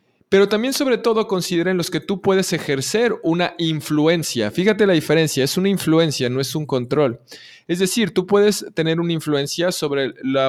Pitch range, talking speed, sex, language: 135-175 Hz, 175 wpm, male, Spanish